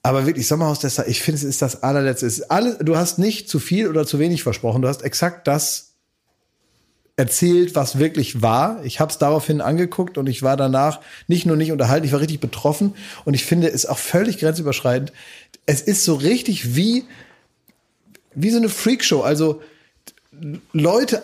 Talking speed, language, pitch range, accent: 175 wpm, German, 145-185 Hz, German